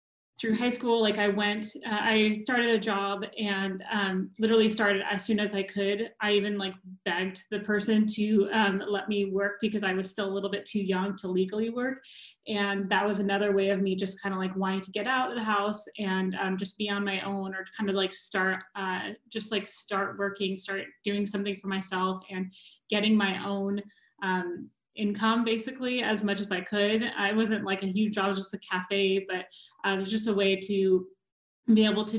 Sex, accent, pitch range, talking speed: female, American, 195-215 Hz, 215 wpm